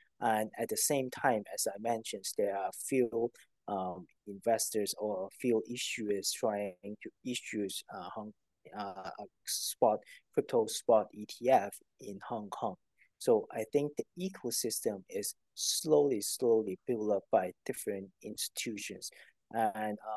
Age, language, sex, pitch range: 20-39, Chinese, male, 110-160 Hz